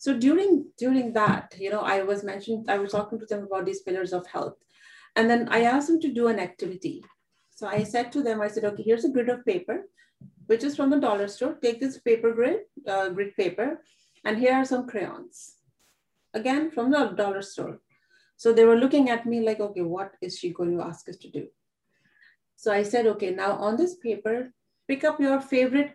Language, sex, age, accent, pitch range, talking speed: English, female, 40-59, Indian, 195-255 Hz, 215 wpm